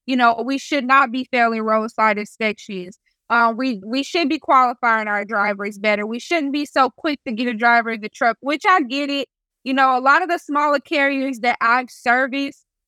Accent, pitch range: American, 240-295 Hz